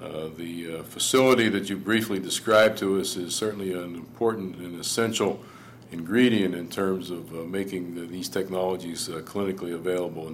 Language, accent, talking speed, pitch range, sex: English, American, 165 wpm, 90-105 Hz, male